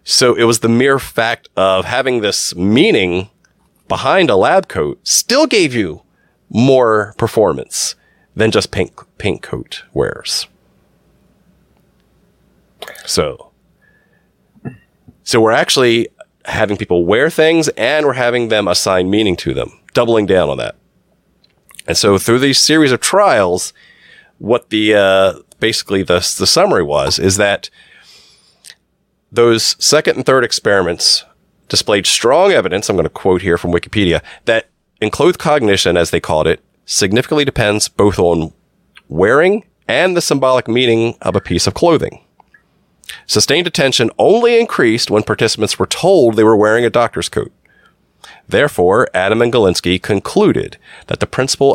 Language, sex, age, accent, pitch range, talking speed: English, male, 30-49, American, 95-125 Hz, 140 wpm